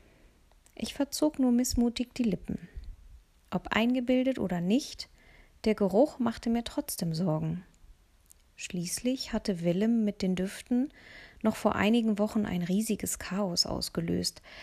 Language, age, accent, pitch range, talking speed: German, 20-39, German, 180-230 Hz, 125 wpm